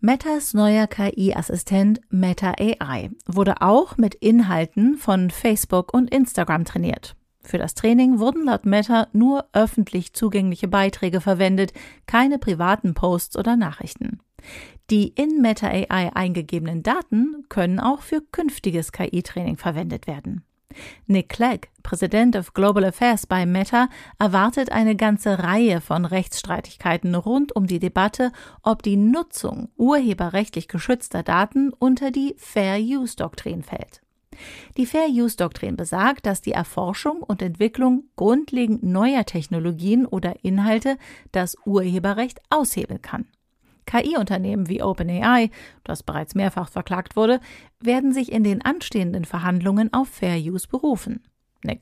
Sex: female